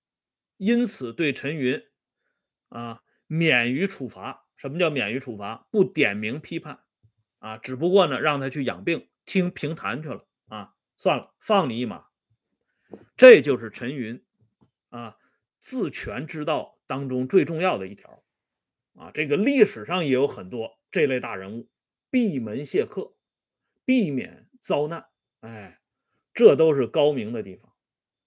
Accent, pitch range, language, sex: Chinese, 120-195 Hz, Swedish, male